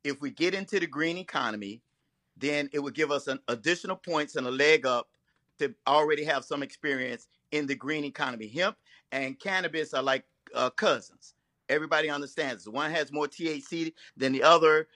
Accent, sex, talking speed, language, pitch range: American, male, 175 wpm, English, 145-210 Hz